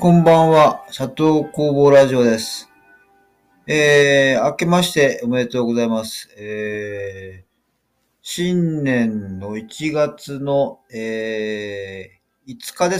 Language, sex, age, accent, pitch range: Japanese, male, 40-59, native, 100-150 Hz